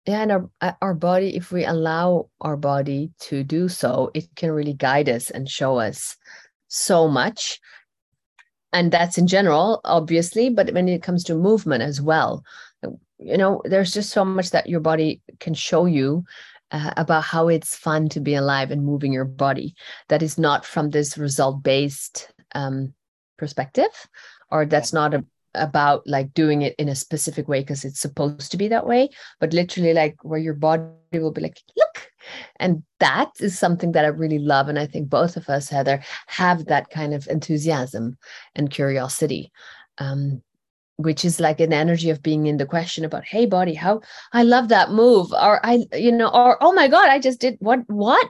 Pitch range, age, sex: 150-185 Hz, 30-49, female